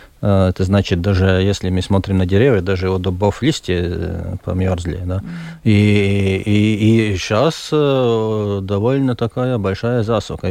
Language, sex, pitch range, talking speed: Russian, male, 95-115 Hz, 125 wpm